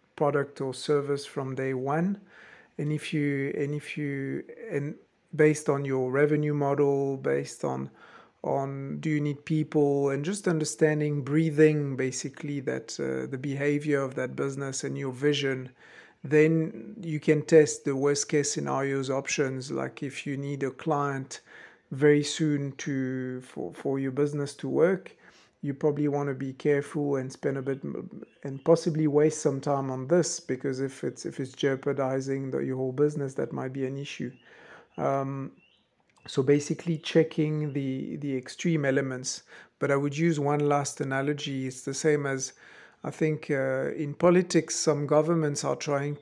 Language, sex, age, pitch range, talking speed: English, male, 50-69, 135-155 Hz, 160 wpm